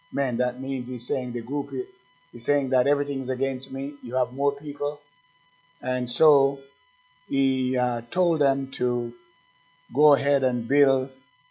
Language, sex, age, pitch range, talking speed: English, male, 50-69, 125-170 Hz, 150 wpm